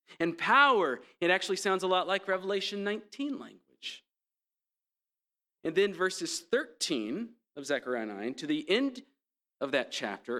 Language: English